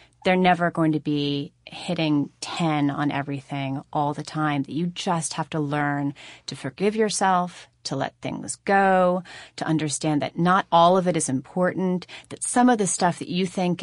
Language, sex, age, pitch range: English, female, 30-49, 160-205 Hz